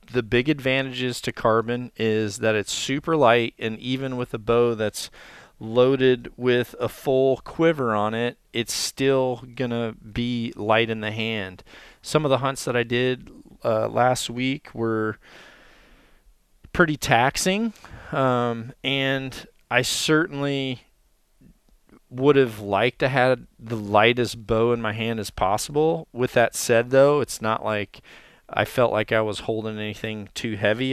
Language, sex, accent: English, male, American